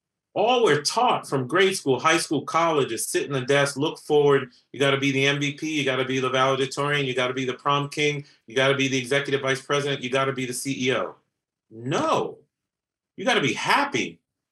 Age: 30-49